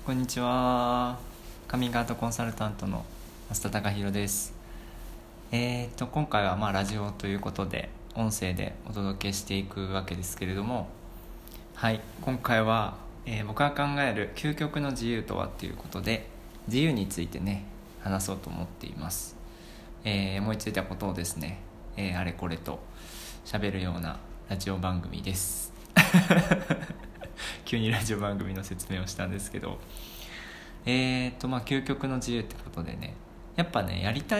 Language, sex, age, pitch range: Japanese, male, 20-39, 95-120 Hz